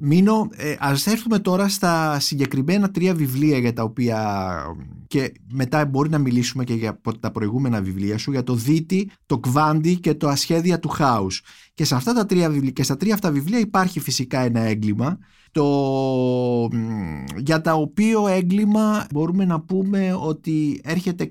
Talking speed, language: 160 wpm, Greek